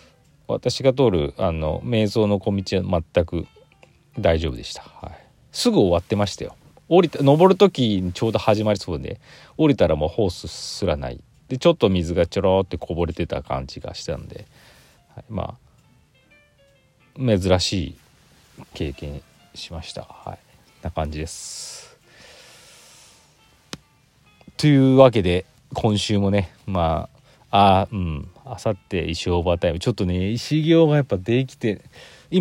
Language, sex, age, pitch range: Japanese, male, 40-59, 85-130 Hz